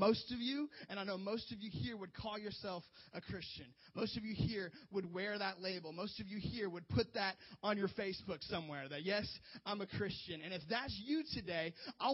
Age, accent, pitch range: 30-49, American, 155-205 Hz